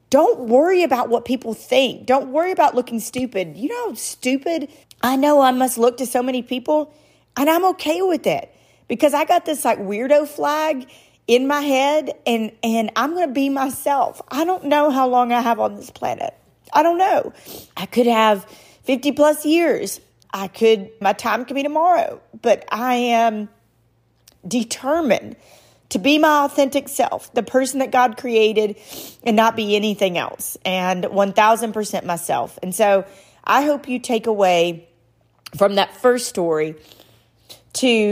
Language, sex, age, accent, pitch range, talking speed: English, female, 40-59, American, 175-265 Hz, 165 wpm